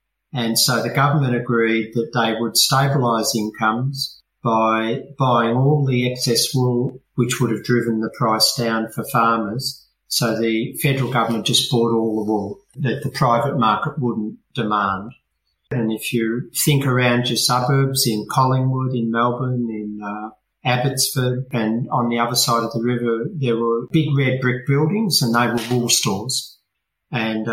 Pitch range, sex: 115-130 Hz, male